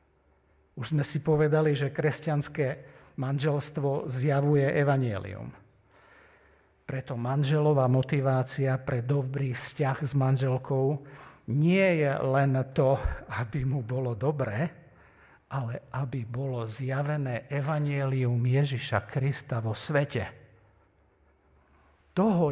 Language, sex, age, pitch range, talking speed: Slovak, male, 50-69, 120-155 Hz, 95 wpm